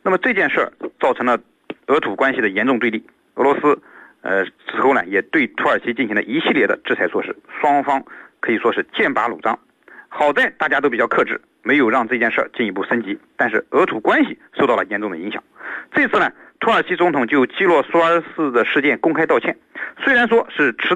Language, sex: Chinese, male